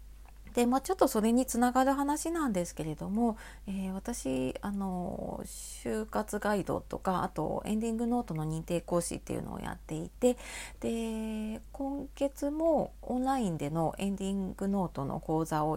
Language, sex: Japanese, female